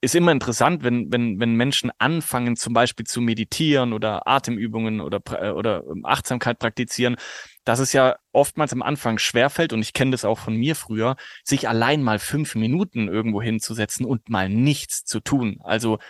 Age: 20-39